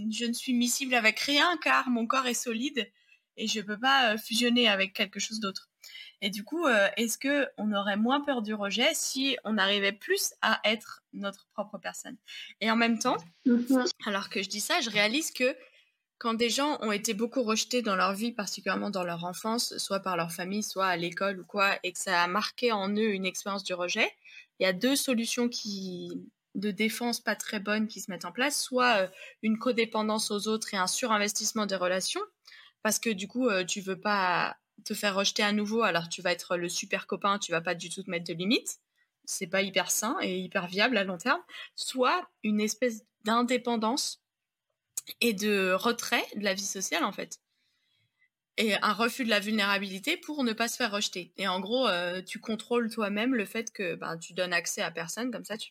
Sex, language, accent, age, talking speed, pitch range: female, French, French, 20-39, 210 wpm, 195-240 Hz